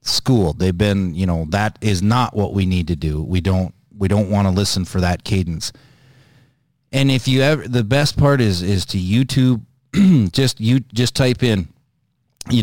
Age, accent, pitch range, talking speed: 30-49, American, 95-125 Hz, 190 wpm